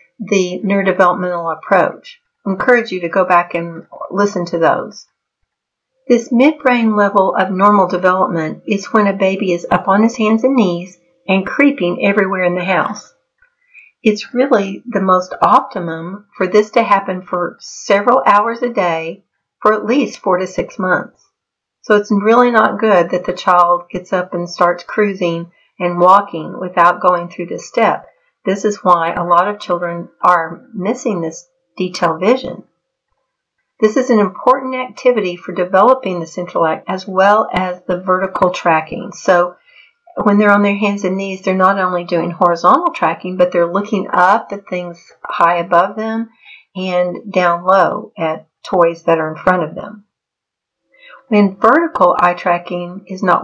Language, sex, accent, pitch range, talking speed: English, female, American, 175-215 Hz, 165 wpm